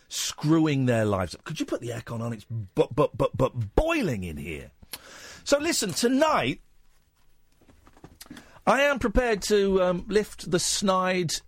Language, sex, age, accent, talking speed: English, male, 40-59, British, 150 wpm